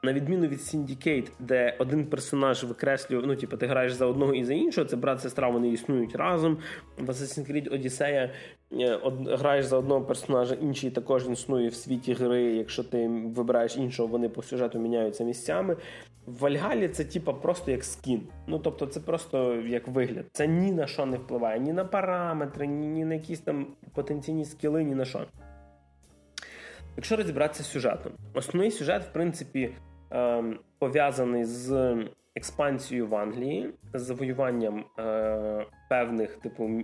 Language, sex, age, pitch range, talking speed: Russian, male, 20-39, 120-150 Hz, 155 wpm